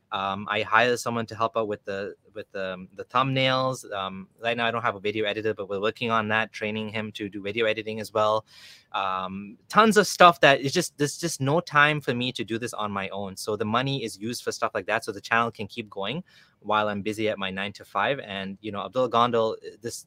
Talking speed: 250 wpm